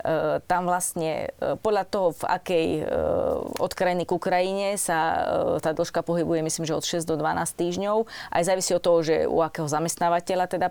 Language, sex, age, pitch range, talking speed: Slovak, female, 30-49, 155-175 Hz, 170 wpm